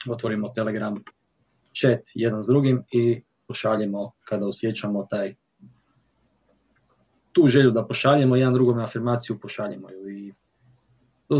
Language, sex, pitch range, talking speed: Croatian, male, 110-135 Hz, 115 wpm